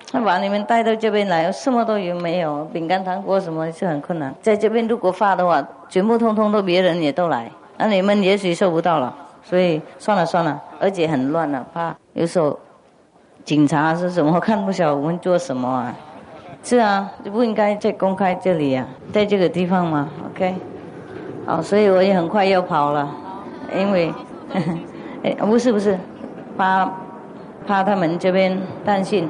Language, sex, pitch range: English, female, 165-205 Hz